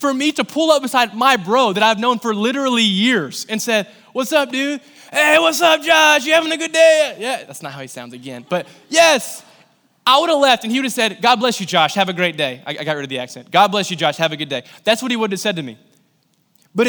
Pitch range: 190-250 Hz